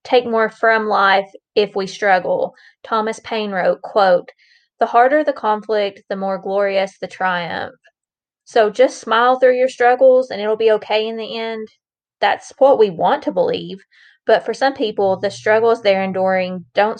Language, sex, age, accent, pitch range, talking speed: English, female, 20-39, American, 190-225 Hz, 170 wpm